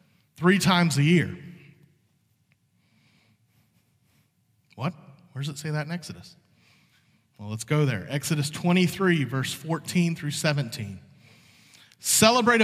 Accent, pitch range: American, 140-185 Hz